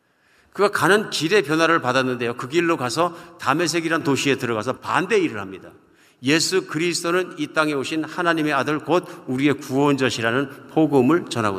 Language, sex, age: Korean, male, 50-69